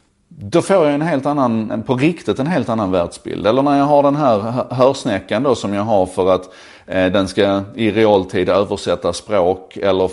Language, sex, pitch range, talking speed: Swedish, male, 95-130 Hz, 190 wpm